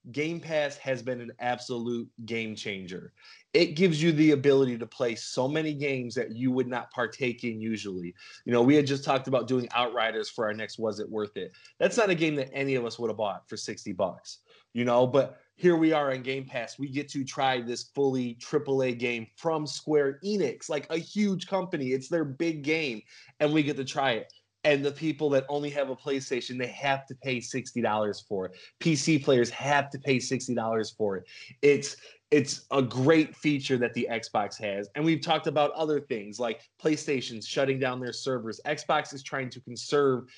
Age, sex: 20-39, male